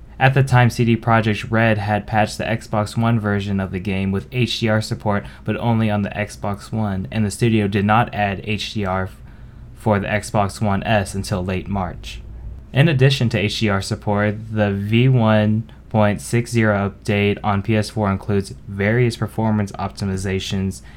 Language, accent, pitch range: English, American, 100-115 Hz